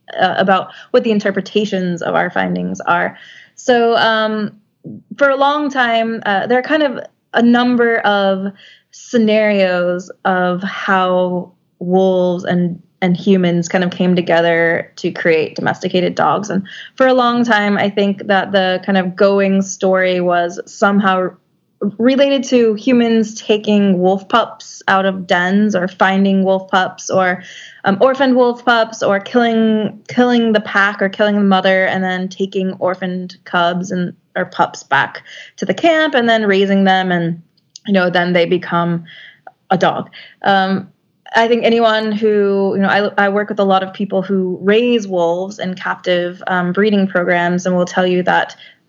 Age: 20-39